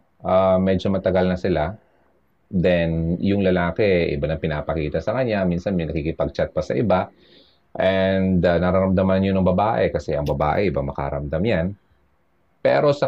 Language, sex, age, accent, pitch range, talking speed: Filipino, male, 30-49, native, 80-110 Hz, 150 wpm